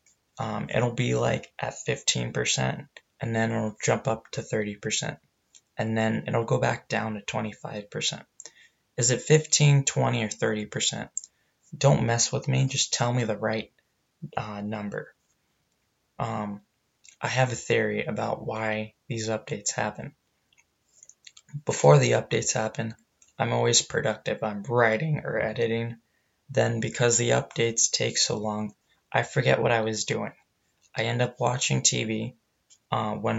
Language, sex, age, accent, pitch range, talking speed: English, male, 20-39, American, 105-120 Hz, 140 wpm